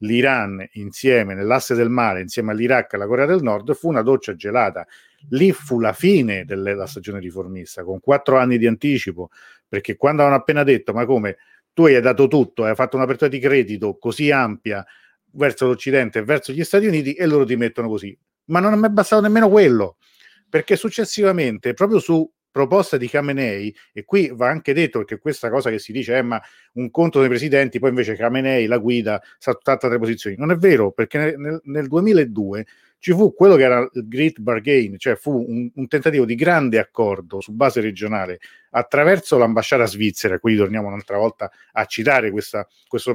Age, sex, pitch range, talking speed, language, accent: 40-59, male, 110-150 Hz, 185 wpm, Italian, native